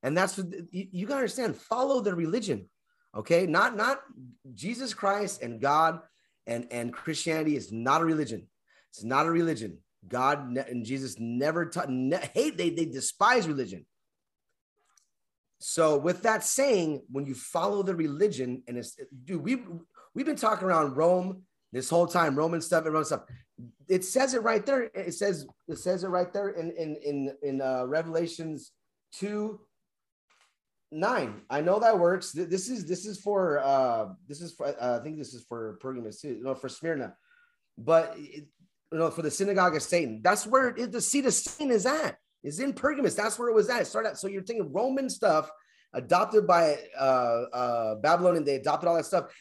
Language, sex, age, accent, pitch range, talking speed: English, male, 30-49, American, 145-205 Hz, 190 wpm